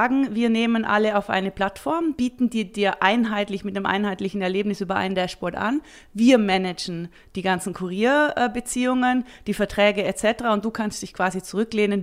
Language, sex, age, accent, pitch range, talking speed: German, female, 30-49, German, 195-220 Hz, 160 wpm